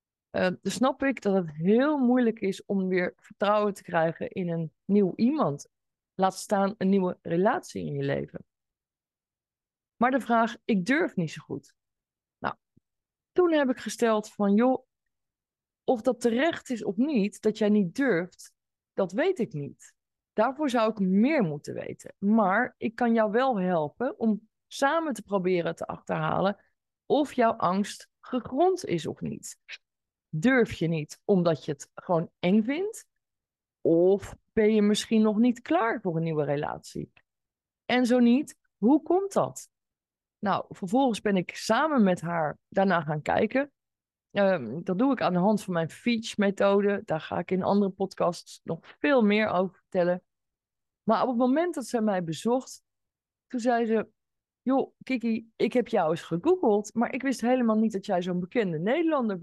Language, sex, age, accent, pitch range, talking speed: Dutch, female, 20-39, Dutch, 185-245 Hz, 165 wpm